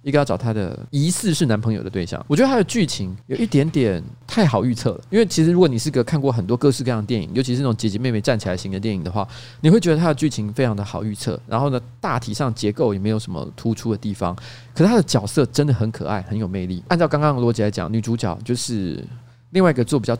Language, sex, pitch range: Chinese, male, 110-145 Hz